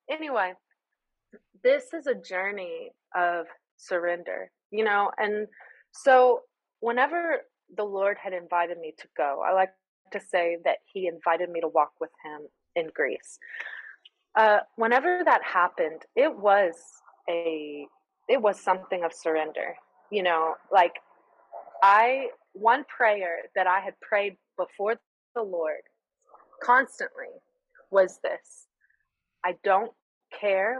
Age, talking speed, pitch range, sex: 20-39, 125 wpm, 175-255 Hz, female